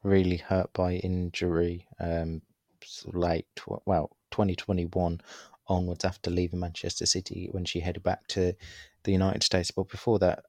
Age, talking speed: 20-39, 145 wpm